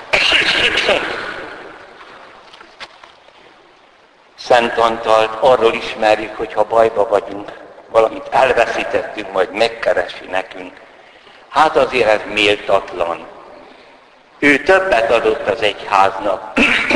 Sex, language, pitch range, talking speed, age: male, Hungarian, 110-135 Hz, 80 wpm, 60-79